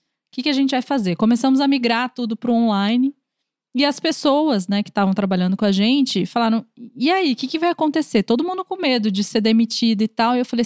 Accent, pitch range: Brazilian, 205-260 Hz